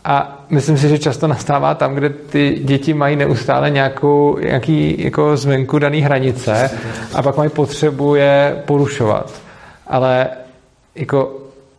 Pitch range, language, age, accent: 120-145 Hz, Czech, 40-59, native